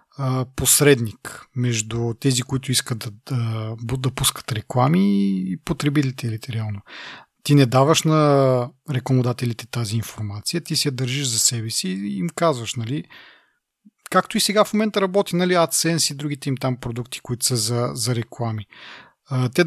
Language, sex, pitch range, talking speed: Bulgarian, male, 120-155 Hz, 150 wpm